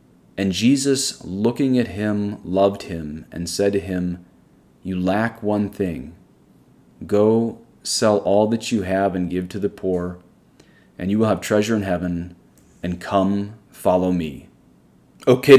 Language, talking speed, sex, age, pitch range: English, 145 wpm, male, 30-49, 90-115 Hz